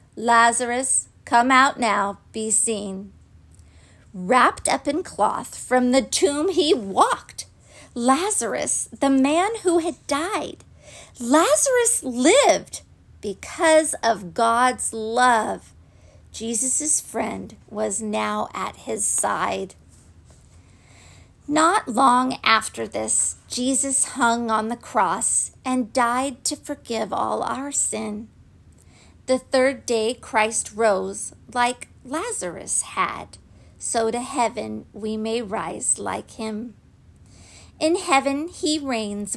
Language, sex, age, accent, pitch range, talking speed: English, female, 50-69, American, 205-270 Hz, 105 wpm